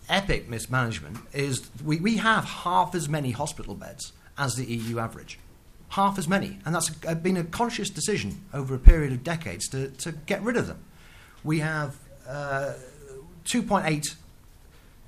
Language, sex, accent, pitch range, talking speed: English, male, British, 115-160 Hz, 155 wpm